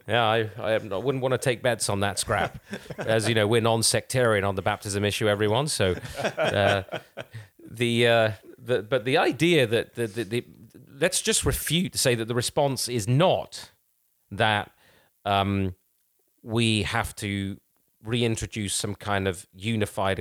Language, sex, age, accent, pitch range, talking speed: English, male, 30-49, British, 95-110 Hz, 165 wpm